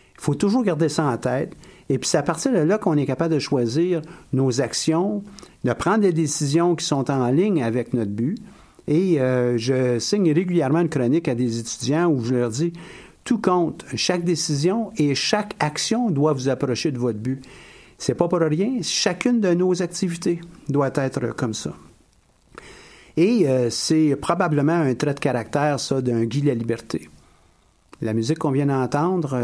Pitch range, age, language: 125-165 Hz, 60-79, French